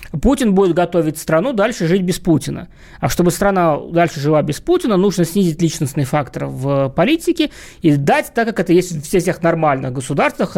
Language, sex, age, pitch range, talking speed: Russian, male, 20-39, 155-200 Hz, 175 wpm